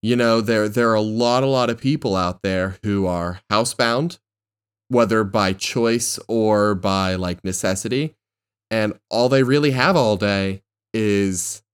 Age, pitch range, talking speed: 20-39, 100-130 Hz, 160 wpm